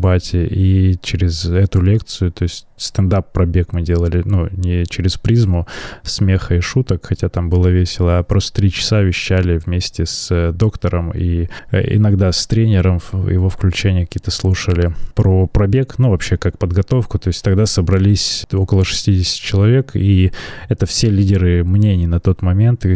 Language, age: Russian, 20-39